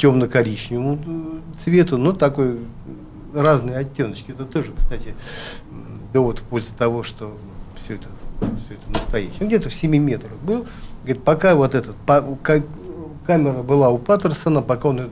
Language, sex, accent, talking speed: Russian, male, native, 150 wpm